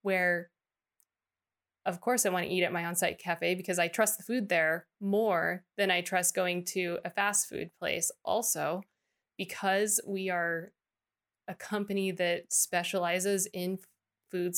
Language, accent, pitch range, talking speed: English, American, 175-200 Hz, 150 wpm